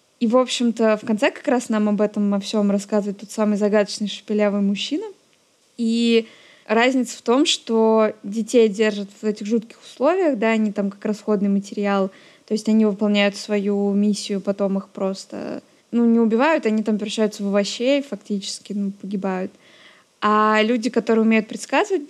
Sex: female